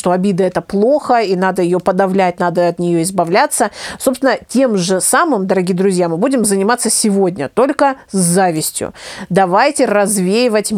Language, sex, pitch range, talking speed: Russian, female, 190-245 Hz, 155 wpm